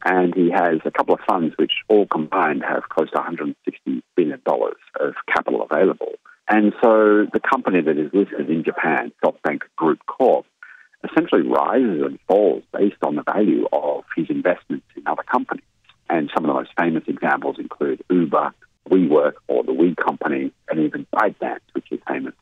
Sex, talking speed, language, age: male, 170 wpm, English, 50-69